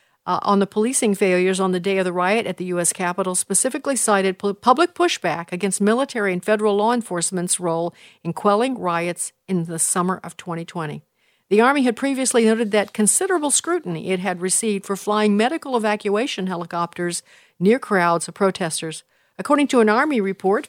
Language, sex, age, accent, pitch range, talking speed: English, female, 50-69, American, 180-225 Hz, 175 wpm